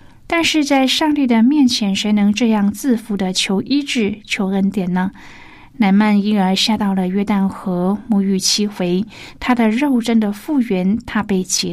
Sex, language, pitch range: female, Chinese, 190-235 Hz